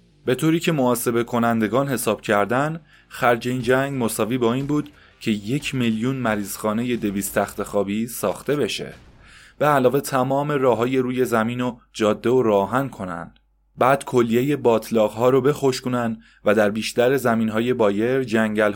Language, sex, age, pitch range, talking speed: Persian, male, 20-39, 110-130 Hz, 155 wpm